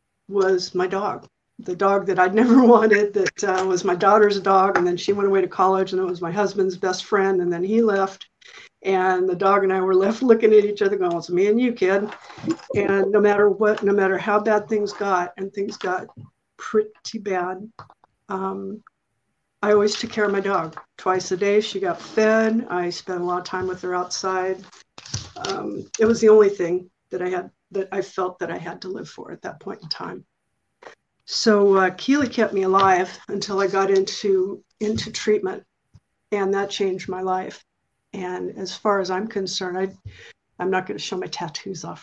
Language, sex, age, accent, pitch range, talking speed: English, female, 50-69, American, 185-205 Hz, 205 wpm